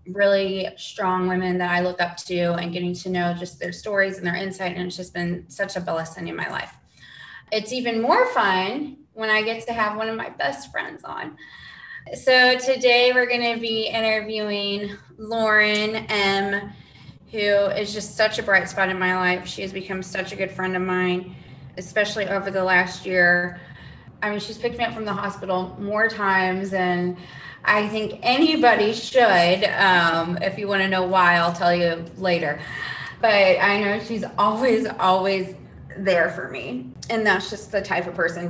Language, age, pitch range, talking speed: English, 20-39, 180-220 Hz, 185 wpm